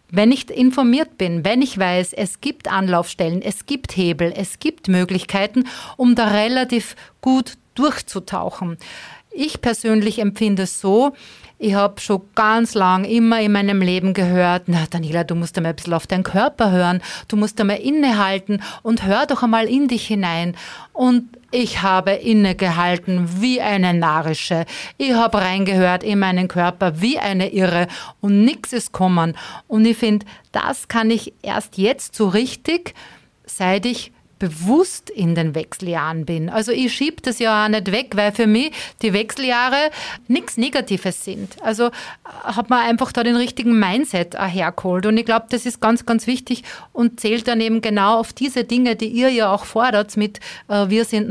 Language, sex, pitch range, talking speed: German, female, 190-240 Hz, 170 wpm